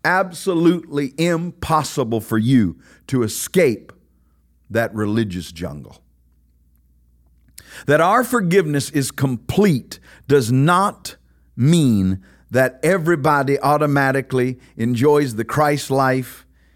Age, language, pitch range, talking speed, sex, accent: 50-69, English, 100-145 Hz, 85 wpm, male, American